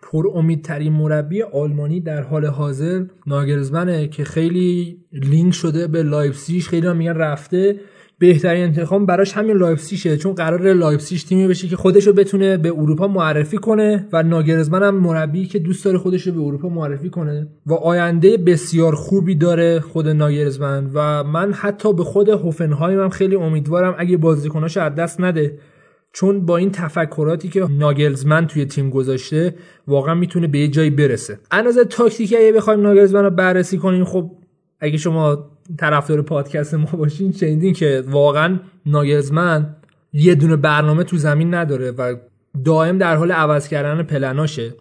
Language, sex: Persian, male